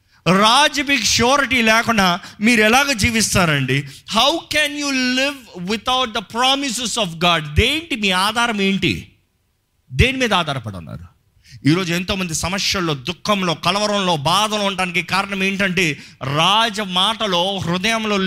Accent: native